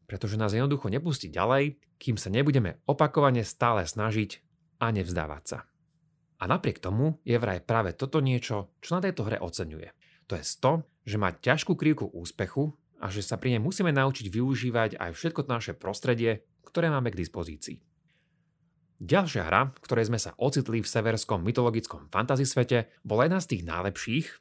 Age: 30-49